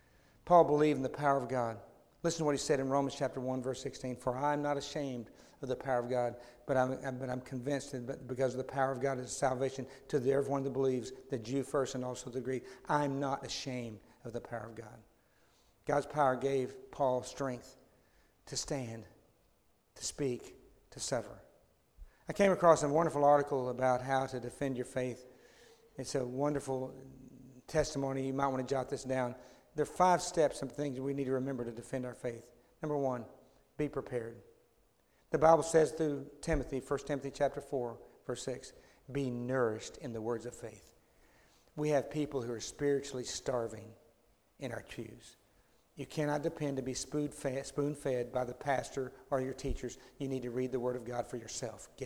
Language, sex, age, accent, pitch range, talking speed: English, male, 60-79, American, 125-140 Hz, 190 wpm